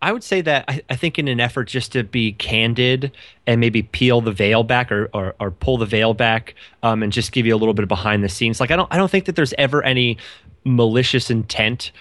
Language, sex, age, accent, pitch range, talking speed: English, male, 20-39, American, 110-125 Hz, 255 wpm